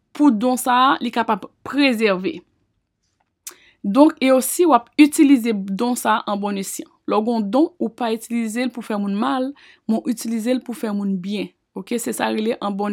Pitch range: 225-285 Hz